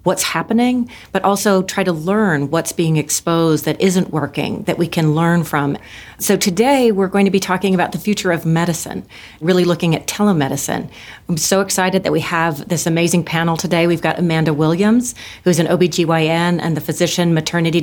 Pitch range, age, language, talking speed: 160-195 Hz, 40-59, English, 185 wpm